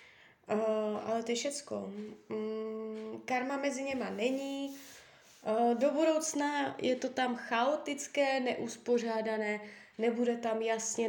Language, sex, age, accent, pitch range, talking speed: Czech, female, 20-39, native, 215-255 Hz, 105 wpm